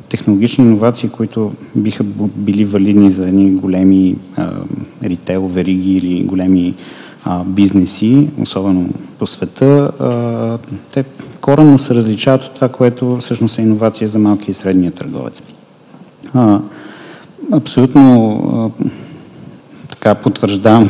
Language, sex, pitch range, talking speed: Bulgarian, male, 95-115 Hz, 110 wpm